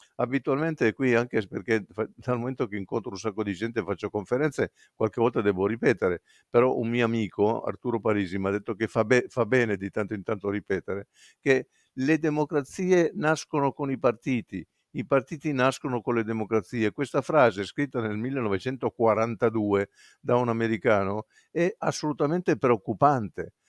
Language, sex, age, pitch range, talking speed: Italian, male, 50-69, 110-130 Hz, 155 wpm